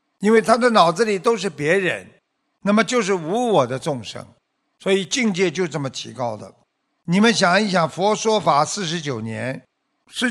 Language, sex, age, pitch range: Chinese, male, 60-79, 170-230 Hz